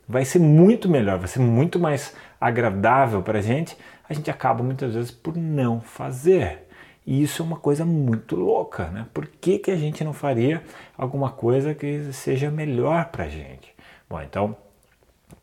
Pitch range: 105-145 Hz